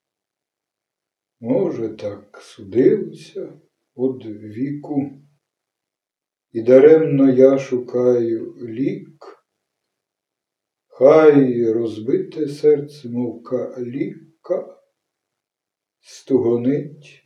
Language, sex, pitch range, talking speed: Ukrainian, male, 115-140 Hz, 55 wpm